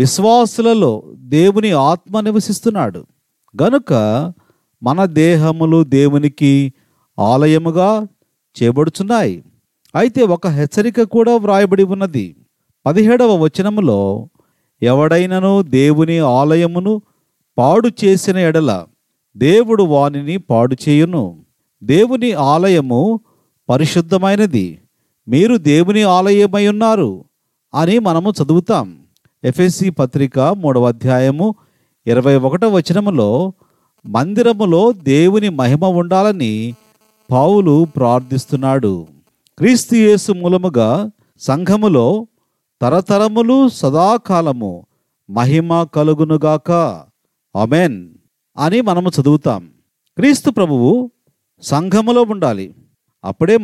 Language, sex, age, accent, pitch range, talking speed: Telugu, male, 40-59, native, 140-205 Hz, 75 wpm